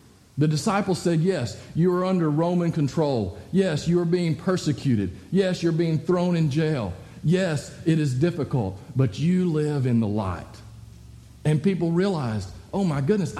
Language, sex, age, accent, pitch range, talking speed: English, male, 50-69, American, 130-215 Hz, 160 wpm